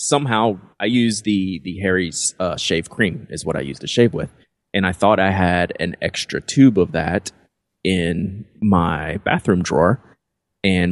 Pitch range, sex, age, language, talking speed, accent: 90-105 Hz, male, 30-49, English, 170 wpm, American